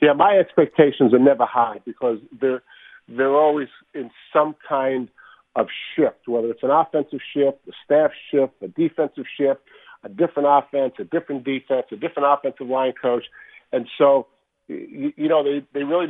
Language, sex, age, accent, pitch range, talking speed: English, male, 50-69, American, 125-150 Hz, 170 wpm